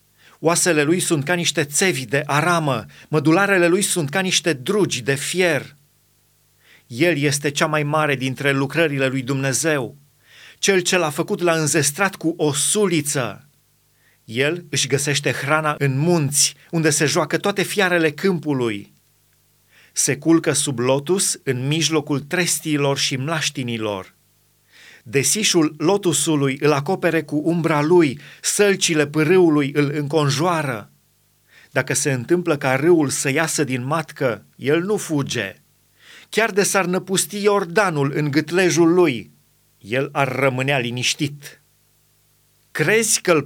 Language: Romanian